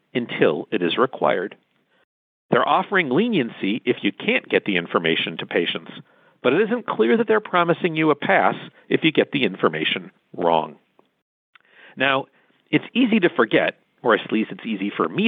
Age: 50-69